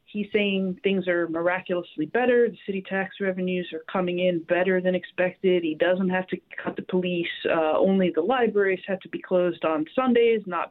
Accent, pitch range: American, 175-210 Hz